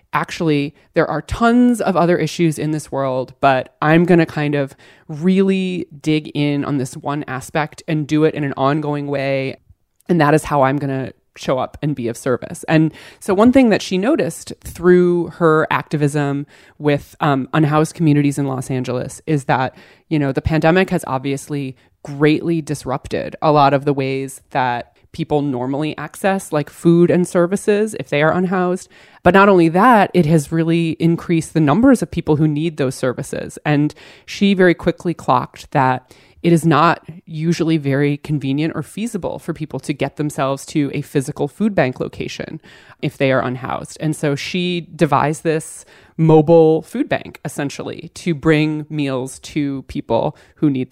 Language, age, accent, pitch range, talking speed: English, 20-39, American, 140-170 Hz, 175 wpm